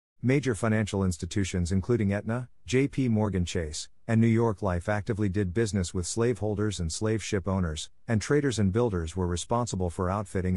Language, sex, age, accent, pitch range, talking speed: English, male, 50-69, American, 90-115 Hz, 165 wpm